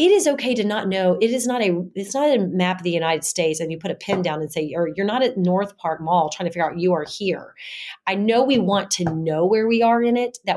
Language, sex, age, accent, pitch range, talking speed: English, female, 30-49, American, 165-220 Hz, 290 wpm